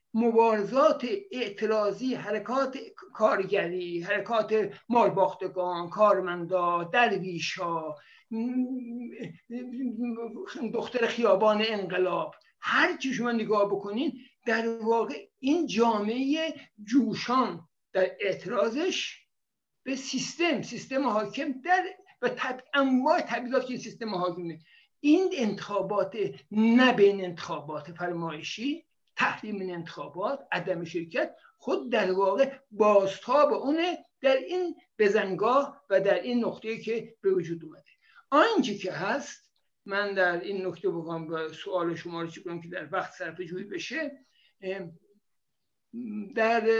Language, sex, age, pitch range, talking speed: Persian, male, 60-79, 190-265 Hz, 105 wpm